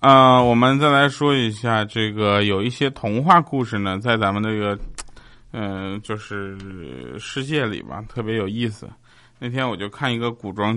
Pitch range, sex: 110-145 Hz, male